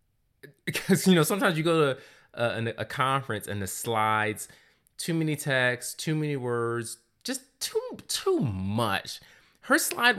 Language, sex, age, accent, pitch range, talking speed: English, male, 20-39, American, 100-145 Hz, 145 wpm